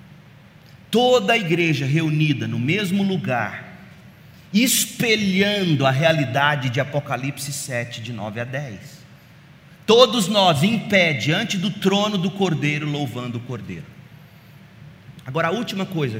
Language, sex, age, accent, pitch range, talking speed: Portuguese, male, 40-59, Brazilian, 135-180 Hz, 120 wpm